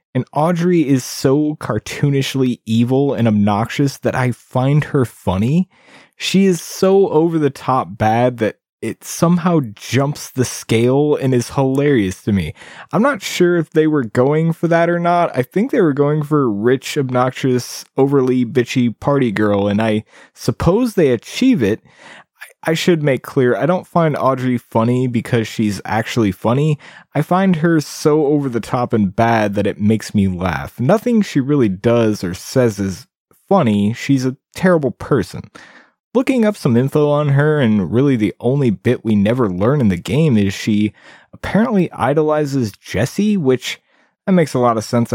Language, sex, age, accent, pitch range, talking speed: English, male, 20-39, American, 115-155 Hz, 165 wpm